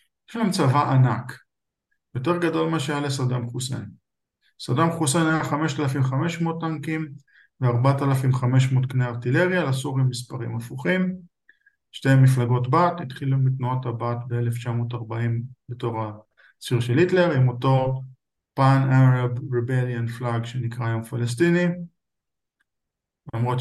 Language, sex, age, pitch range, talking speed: Hebrew, male, 50-69, 120-160 Hz, 105 wpm